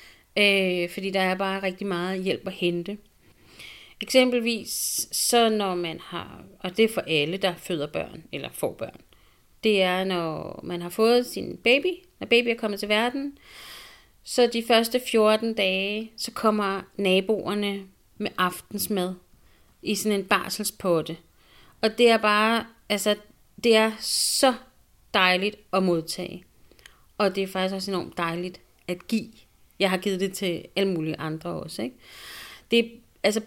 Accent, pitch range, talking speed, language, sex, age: native, 175-215 Hz, 155 wpm, Danish, female, 30-49